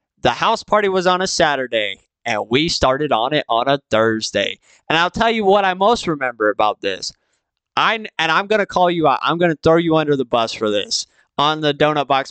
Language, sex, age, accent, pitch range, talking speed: English, male, 20-39, American, 140-175 Hz, 230 wpm